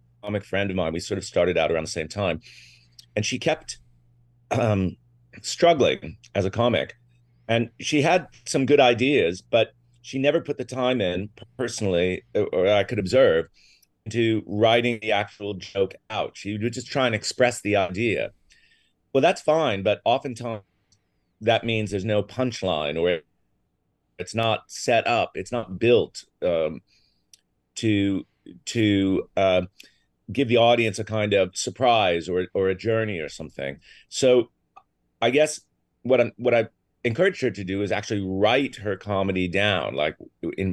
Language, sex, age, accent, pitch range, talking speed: English, male, 30-49, American, 95-120 Hz, 160 wpm